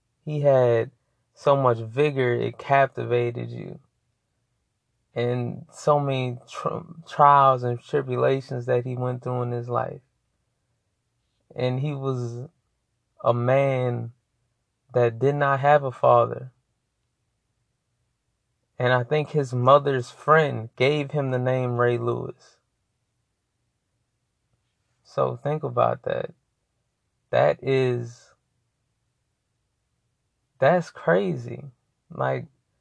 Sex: male